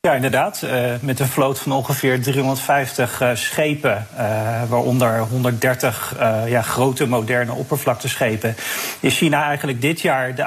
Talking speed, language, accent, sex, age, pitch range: 145 wpm, Dutch, Dutch, male, 40-59, 120-140 Hz